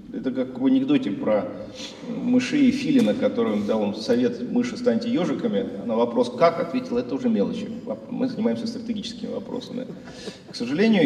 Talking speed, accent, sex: 145 wpm, native, male